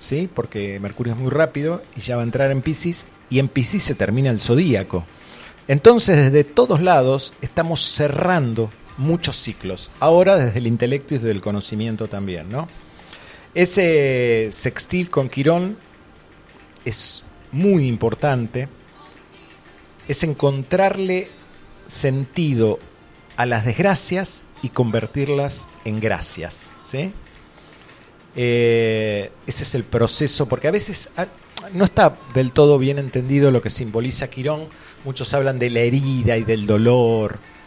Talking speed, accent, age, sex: 130 wpm, Argentinian, 40-59, male